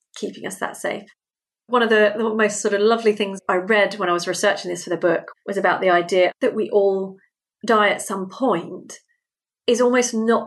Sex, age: female, 40-59